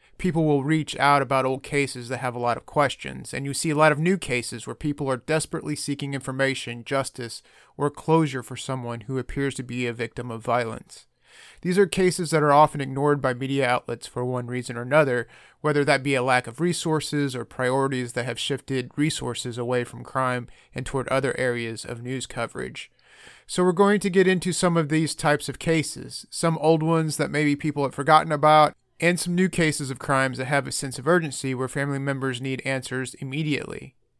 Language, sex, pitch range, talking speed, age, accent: English, male, 130-160 Hz, 205 wpm, 30-49, American